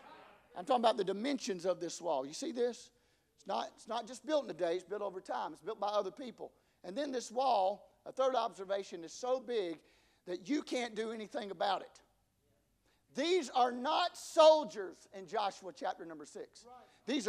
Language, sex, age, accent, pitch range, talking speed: English, male, 50-69, American, 235-325 Hz, 190 wpm